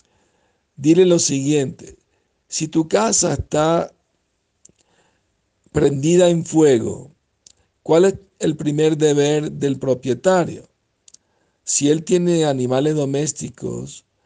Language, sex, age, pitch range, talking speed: Spanish, male, 60-79, 125-165 Hz, 95 wpm